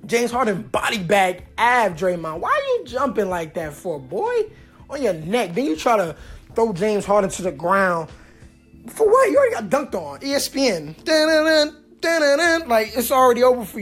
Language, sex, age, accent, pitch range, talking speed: English, male, 20-39, American, 190-255 Hz, 180 wpm